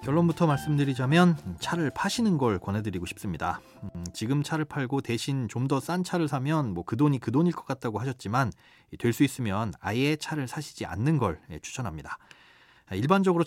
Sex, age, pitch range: male, 30-49, 115-160 Hz